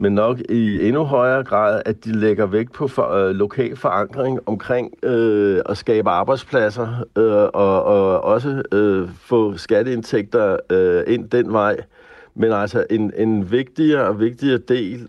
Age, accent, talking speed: 60-79, native, 130 wpm